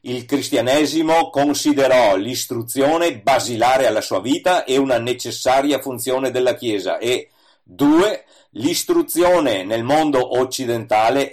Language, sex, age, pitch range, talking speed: Italian, male, 50-69, 130-170 Hz, 105 wpm